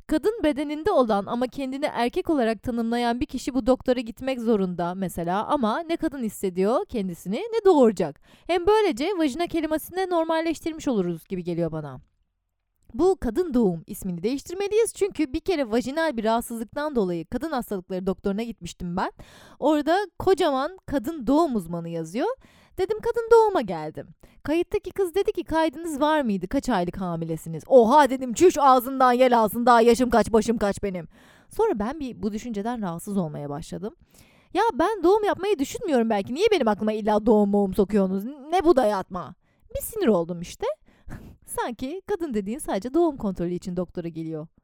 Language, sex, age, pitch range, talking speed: Turkish, female, 30-49, 195-320 Hz, 155 wpm